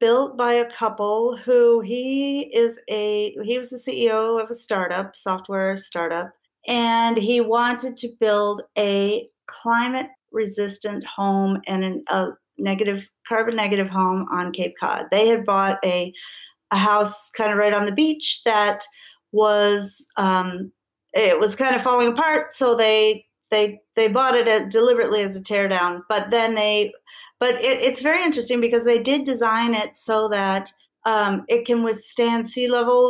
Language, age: English, 40-59